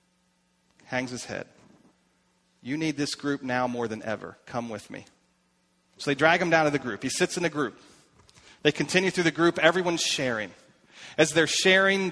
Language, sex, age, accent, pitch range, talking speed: English, male, 40-59, American, 145-180 Hz, 185 wpm